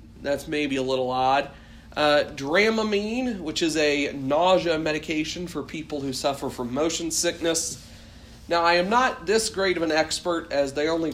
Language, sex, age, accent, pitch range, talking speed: English, male, 40-59, American, 130-160 Hz, 165 wpm